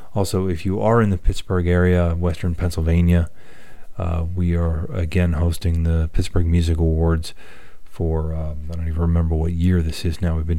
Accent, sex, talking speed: American, male, 180 wpm